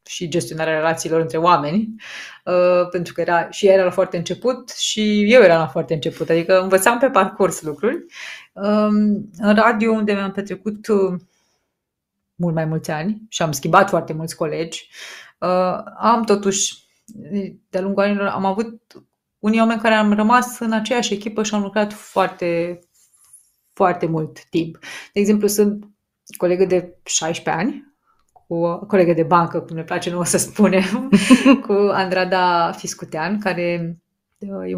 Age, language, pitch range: 30-49, Romanian, 170-205 Hz